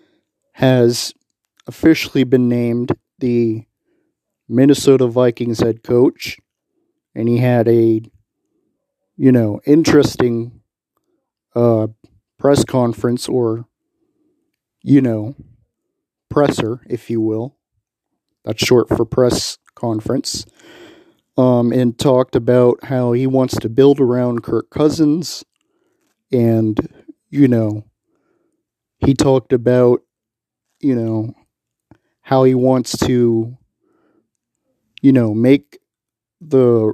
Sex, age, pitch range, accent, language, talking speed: male, 40-59, 110-135 Hz, American, English, 95 wpm